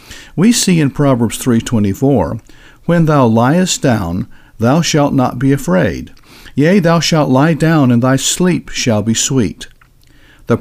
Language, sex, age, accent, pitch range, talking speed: English, male, 50-69, American, 115-165 Hz, 145 wpm